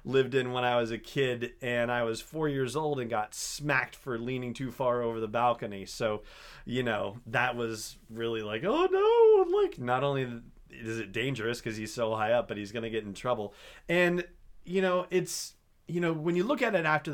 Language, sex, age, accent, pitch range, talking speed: English, male, 30-49, American, 115-150 Hz, 215 wpm